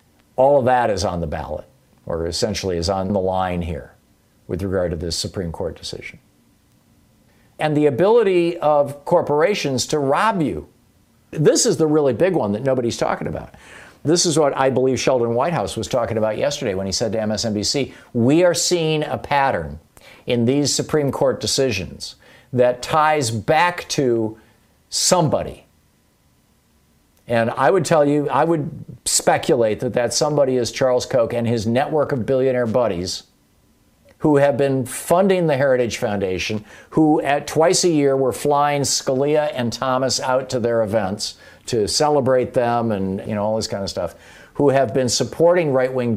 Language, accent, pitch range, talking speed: English, American, 105-145 Hz, 165 wpm